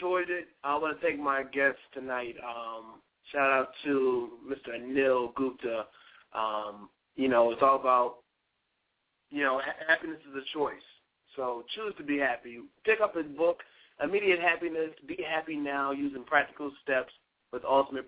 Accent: American